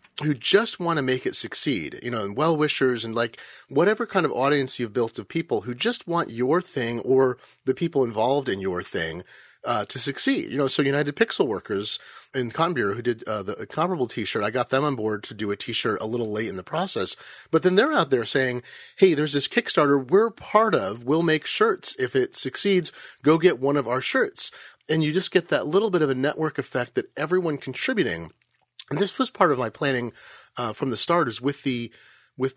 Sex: male